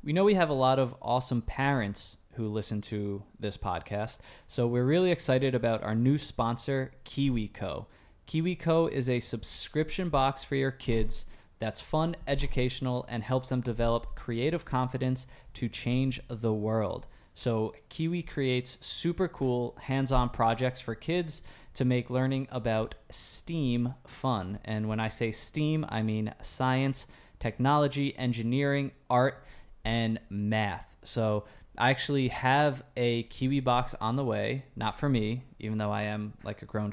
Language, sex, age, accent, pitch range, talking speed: English, male, 20-39, American, 110-135 Hz, 150 wpm